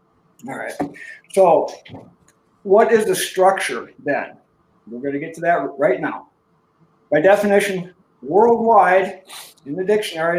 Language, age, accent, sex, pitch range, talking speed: English, 50-69, American, male, 145-200 Hz, 125 wpm